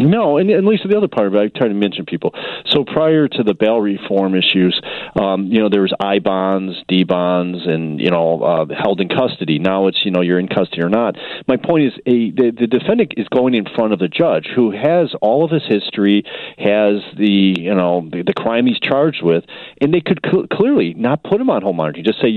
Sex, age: male, 40-59